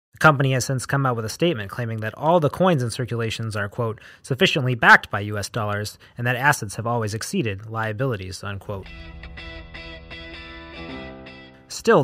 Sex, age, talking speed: male, 30-49, 160 wpm